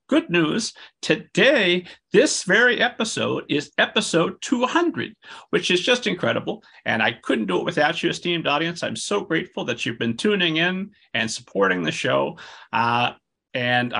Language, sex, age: English, male, 40-59